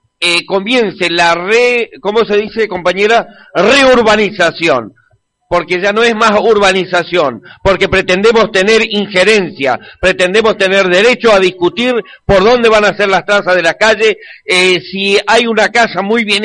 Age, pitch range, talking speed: 50-69, 190-230 Hz, 150 wpm